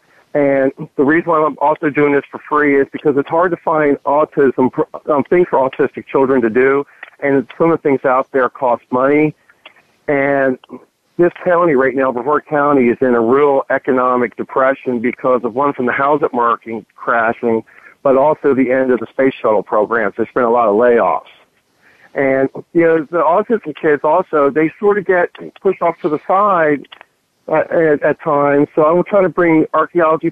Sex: male